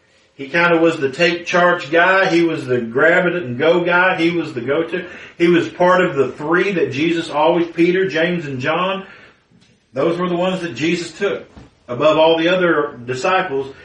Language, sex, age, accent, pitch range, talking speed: English, male, 50-69, American, 120-170 Hz, 200 wpm